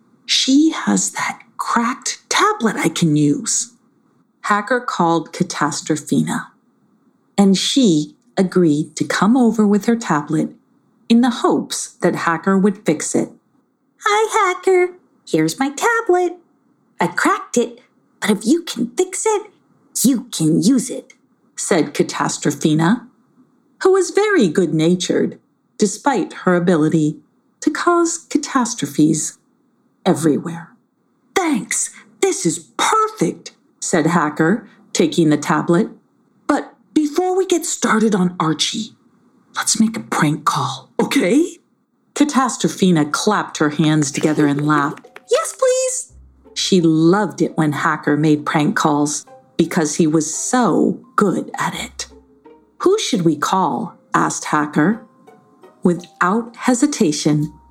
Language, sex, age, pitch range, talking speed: English, female, 50-69, 160-265 Hz, 115 wpm